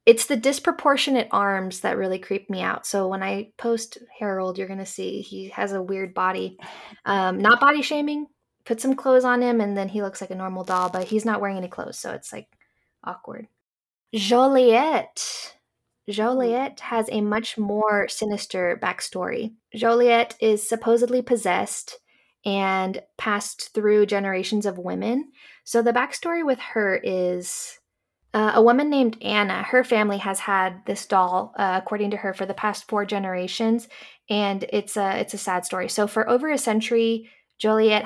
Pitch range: 195-235 Hz